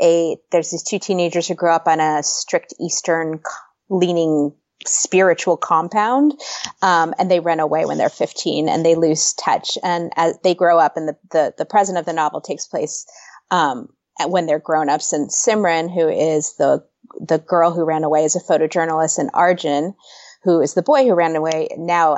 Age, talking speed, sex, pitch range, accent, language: 30-49, 190 wpm, female, 160-185 Hz, American, English